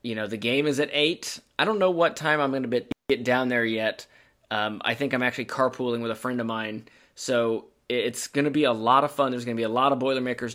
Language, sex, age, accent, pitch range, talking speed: English, male, 20-39, American, 120-145 Hz, 265 wpm